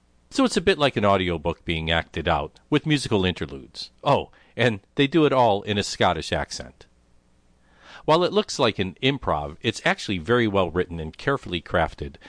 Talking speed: 180 wpm